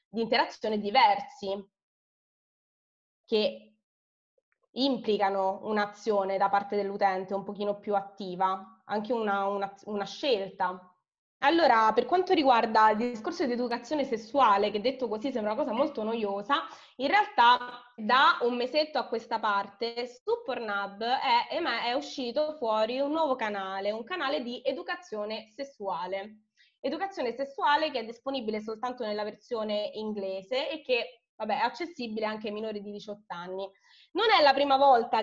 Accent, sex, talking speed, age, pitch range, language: native, female, 135 wpm, 20-39, 205-255 Hz, Italian